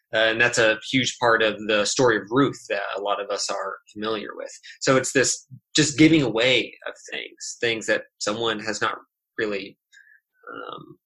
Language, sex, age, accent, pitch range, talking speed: English, male, 20-39, American, 115-160 Hz, 185 wpm